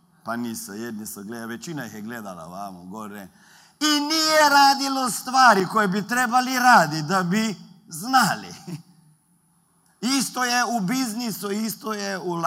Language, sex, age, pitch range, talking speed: Croatian, male, 50-69, 170-235 Hz, 140 wpm